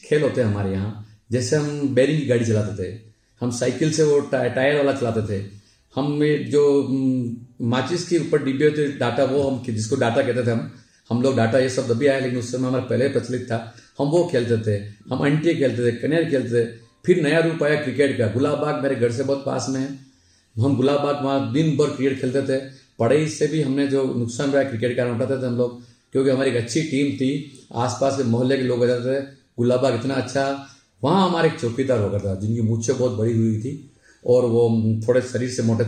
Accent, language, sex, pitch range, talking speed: native, Hindi, male, 120-145 Hz, 225 wpm